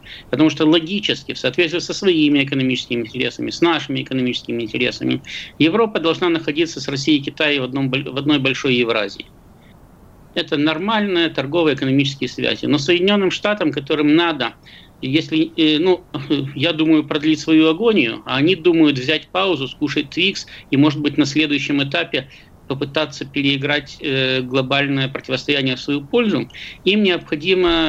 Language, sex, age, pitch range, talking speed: Russian, male, 50-69, 135-160 Hz, 135 wpm